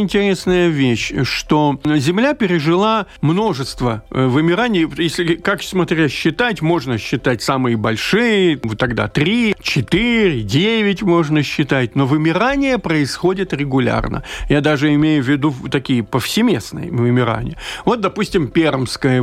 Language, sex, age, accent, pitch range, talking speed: Russian, male, 50-69, native, 140-205 Hz, 110 wpm